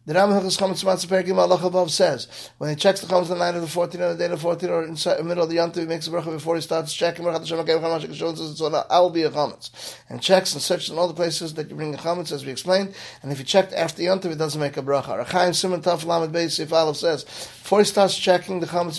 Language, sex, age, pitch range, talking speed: English, male, 30-49, 155-180 Hz, 295 wpm